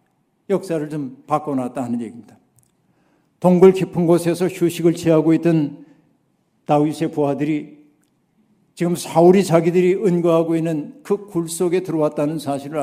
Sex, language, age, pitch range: male, Korean, 60-79, 150-180 Hz